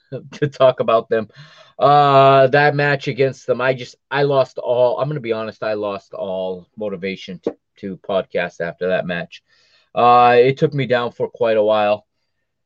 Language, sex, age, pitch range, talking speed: English, male, 30-49, 110-165 Hz, 180 wpm